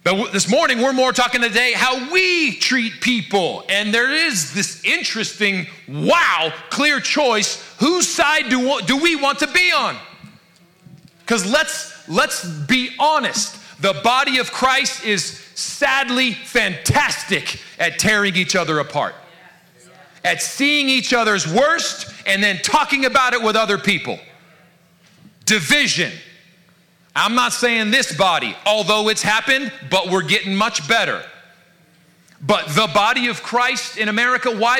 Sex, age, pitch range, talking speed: male, 40-59, 185-255 Hz, 135 wpm